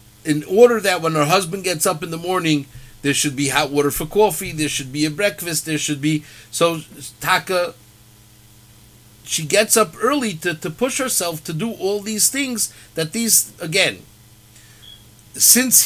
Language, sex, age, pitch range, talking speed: English, male, 50-69, 125-185 Hz, 170 wpm